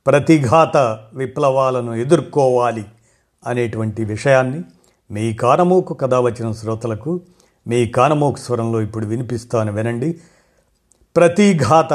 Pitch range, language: 115-155 Hz, Telugu